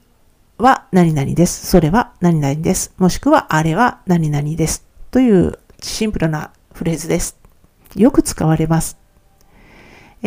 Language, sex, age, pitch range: Japanese, female, 50-69, 165-240 Hz